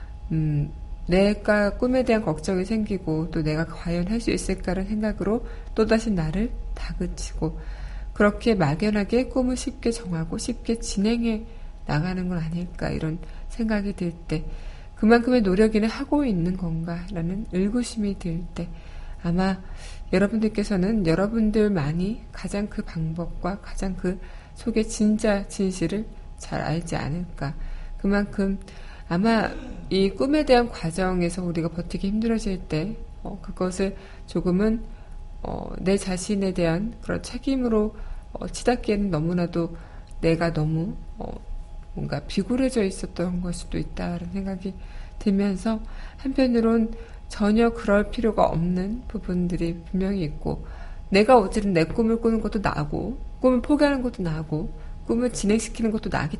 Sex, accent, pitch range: female, native, 170-220 Hz